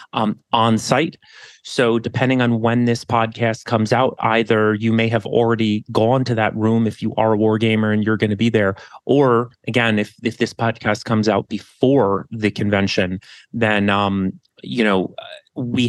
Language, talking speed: English, 180 wpm